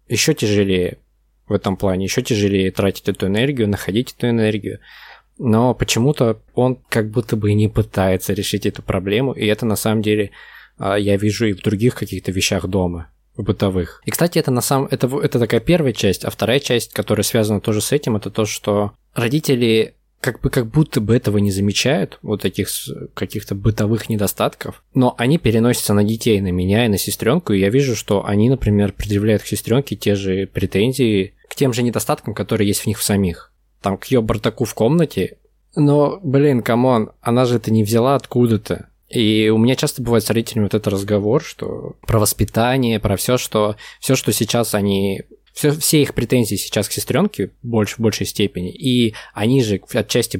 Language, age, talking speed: Russian, 20-39, 185 wpm